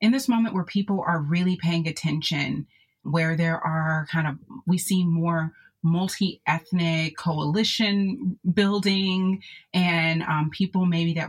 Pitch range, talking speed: 155-195 Hz, 135 wpm